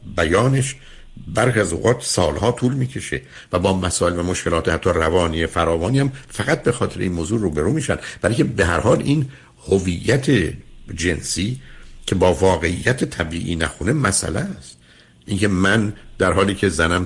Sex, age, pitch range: male, 60-79, 80-115 Hz